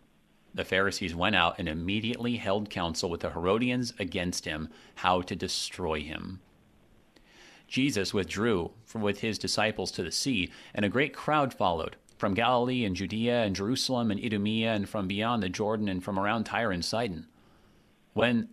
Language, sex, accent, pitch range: English, male, American, 95-115 Hz